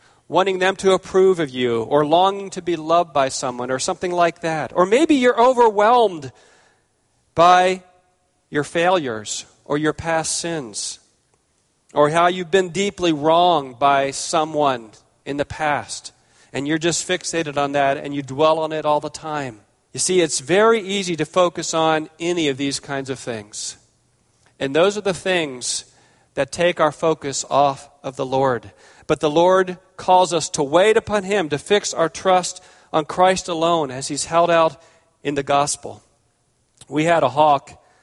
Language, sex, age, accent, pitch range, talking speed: English, male, 40-59, American, 135-175 Hz, 170 wpm